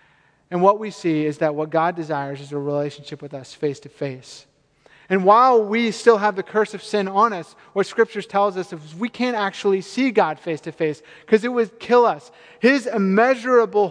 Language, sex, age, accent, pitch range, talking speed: English, male, 30-49, American, 160-205 Hz, 205 wpm